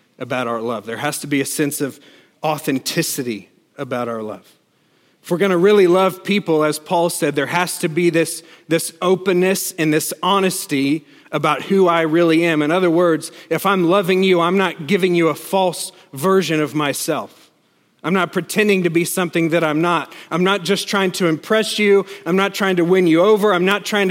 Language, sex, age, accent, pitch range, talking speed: English, male, 40-59, American, 155-190 Hz, 200 wpm